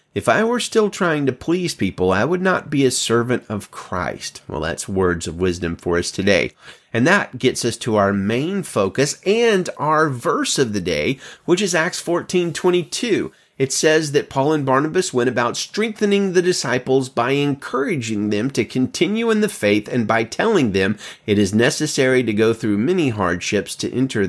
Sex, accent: male, American